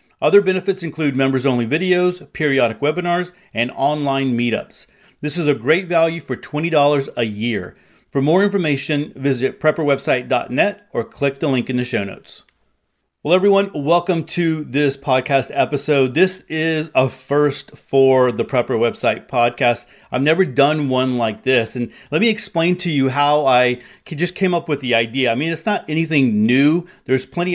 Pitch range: 130-155 Hz